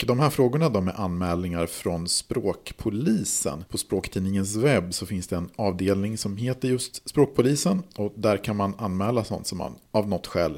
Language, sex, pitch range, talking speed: Swedish, male, 95-130 Hz, 180 wpm